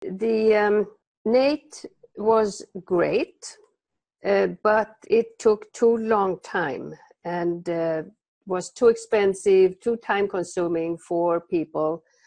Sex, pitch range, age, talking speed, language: female, 175-225 Hz, 50-69, 105 wpm, English